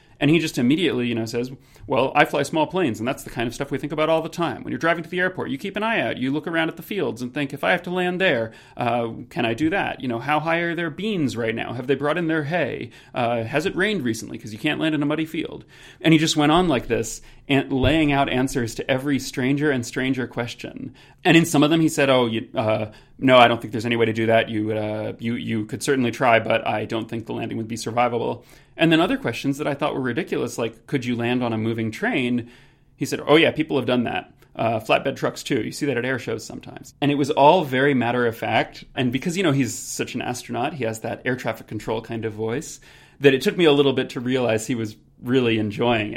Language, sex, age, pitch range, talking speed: English, male, 30-49, 115-150 Hz, 270 wpm